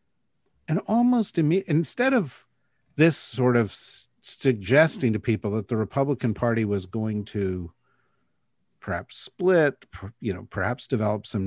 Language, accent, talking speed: English, American, 130 wpm